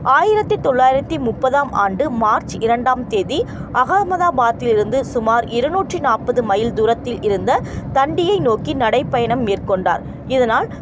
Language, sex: Tamil, female